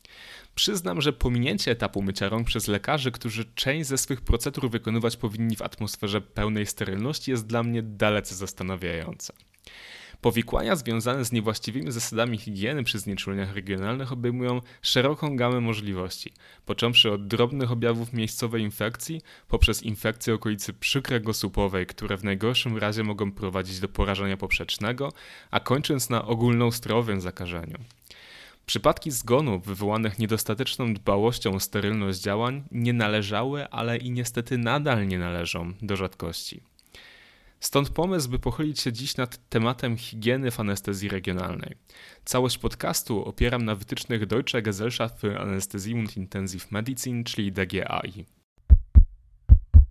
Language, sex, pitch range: Polish, male, 100-125 Hz